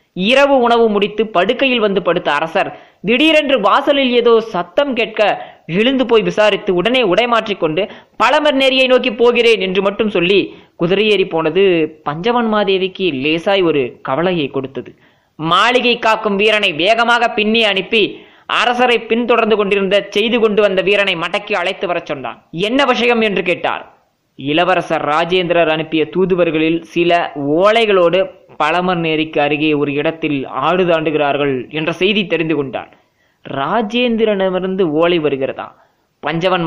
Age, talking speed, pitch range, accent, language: 20-39, 120 wpm, 170-230 Hz, native, Tamil